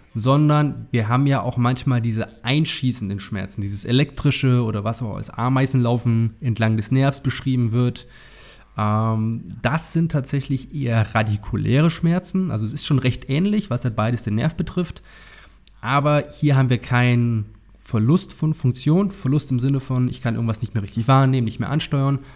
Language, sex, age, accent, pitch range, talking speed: German, male, 20-39, German, 110-135 Hz, 165 wpm